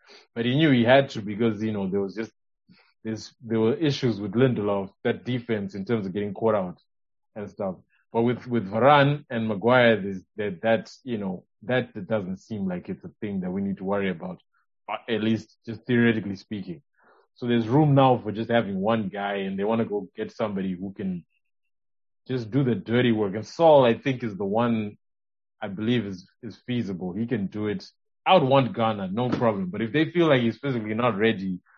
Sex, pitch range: male, 100-125 Hz